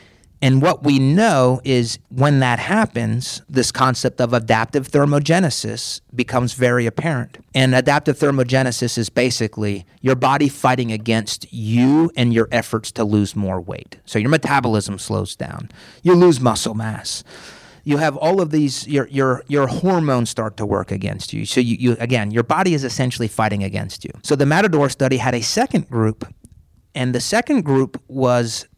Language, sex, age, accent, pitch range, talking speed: English, male, 30-49, American, 115-140 Hz, 170 wpm